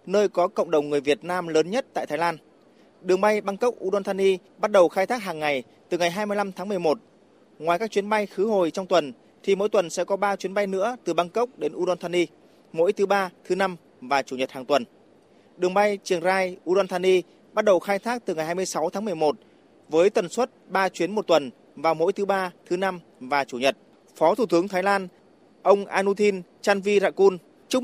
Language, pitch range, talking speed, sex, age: Vietnamese, 170-205 Hz, 210 wpm, male, 20-39